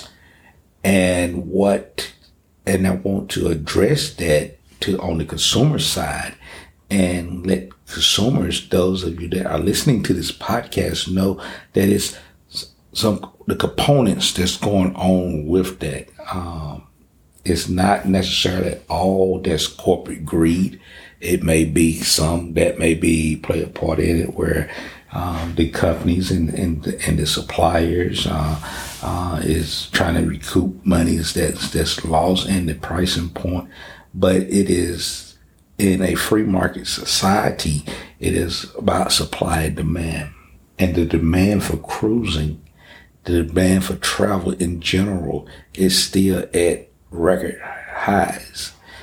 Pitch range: 80-95 Hz